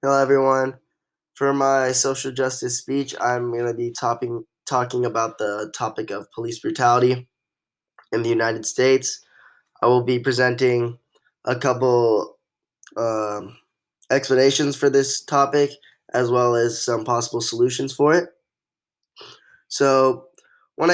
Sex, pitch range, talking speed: male, 120-135 Hz, 125 wpm